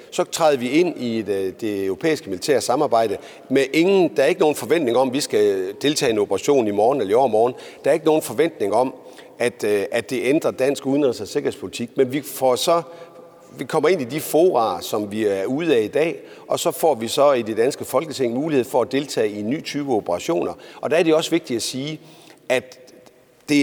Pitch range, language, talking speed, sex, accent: 115-170 Hz, Danish, 225 wpm, male, native